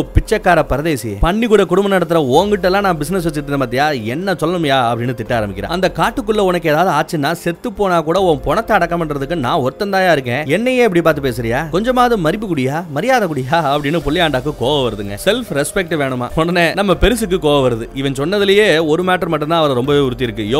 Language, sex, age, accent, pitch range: Tamil, male, 30-49, native, 140-185 Hz